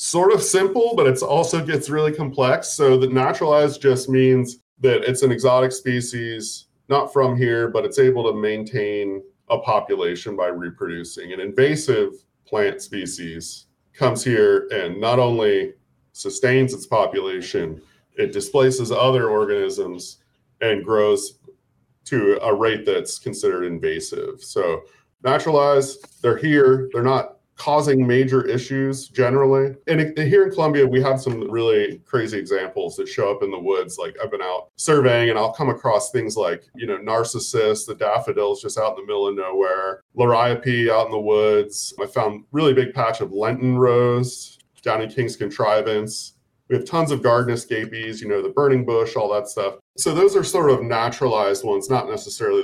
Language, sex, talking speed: English, male, 165 wpm